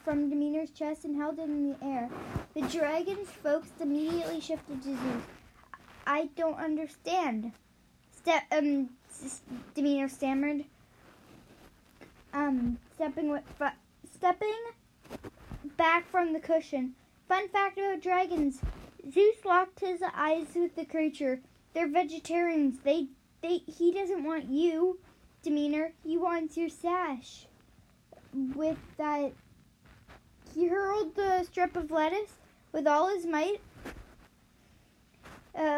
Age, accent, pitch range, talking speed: 10-29, American, 285-345 Hz, 115 wpm